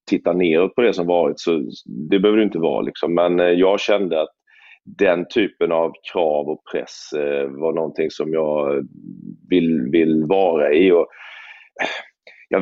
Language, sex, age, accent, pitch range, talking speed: Swedish, male, 30-49, native, 85-125 Hz, 155 wpm